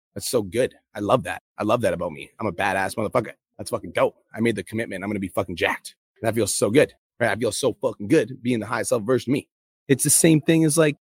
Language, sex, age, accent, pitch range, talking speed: English, male, 30-49, American, 110-135 Hz, 275 wpm